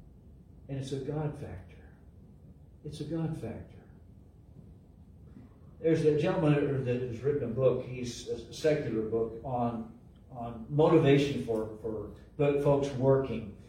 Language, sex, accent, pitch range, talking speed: English, male, American, 115-160 Hz, 125 wpm